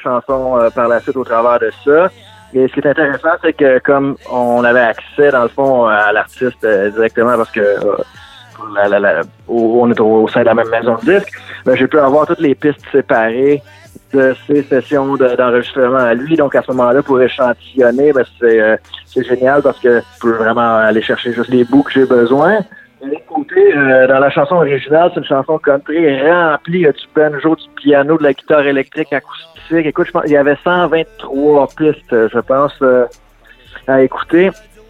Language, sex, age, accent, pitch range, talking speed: French, male, 30-49, Canadian, 120-145 Hz, 195 wpm